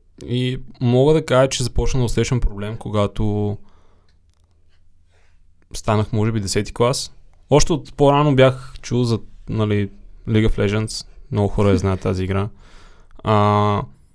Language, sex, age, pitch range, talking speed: Bulgarian, male, 20-39, 100-125 Hz, 135 wpm